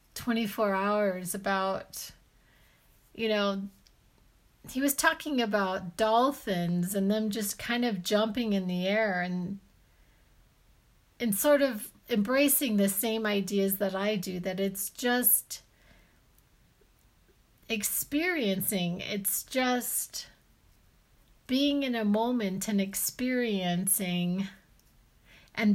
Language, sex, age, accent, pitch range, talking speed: English, female, 40-59, American, 195-240 Hz, 100 wpm